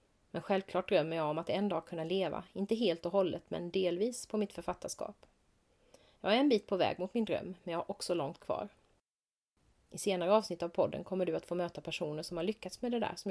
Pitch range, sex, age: 170-210 Hz, female, 30-49